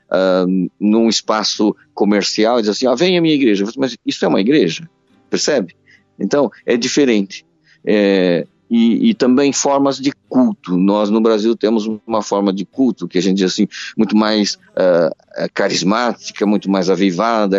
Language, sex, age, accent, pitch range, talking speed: Portuguese, male, 50-69, Brazilian, 100-130 Hz, 165 wpm